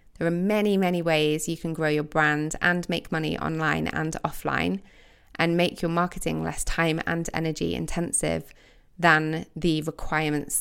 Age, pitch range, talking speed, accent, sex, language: 20-39, 160-185 Hz, 160 wpm, British, female, English